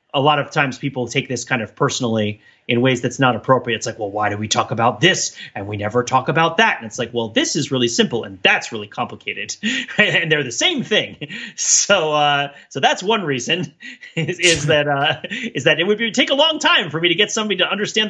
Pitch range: 125-185 Hz